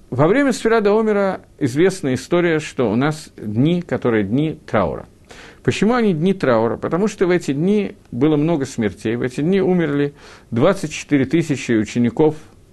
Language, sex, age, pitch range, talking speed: Russian, male, 50-69, 120-180 Hz, 150 wpm